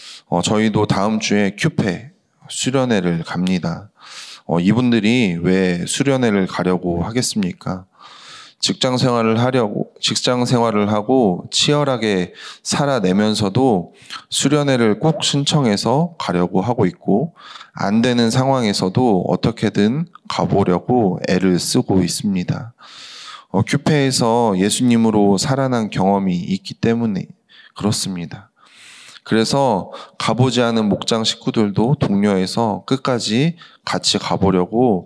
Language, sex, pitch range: Korean, male, 100-130 Hz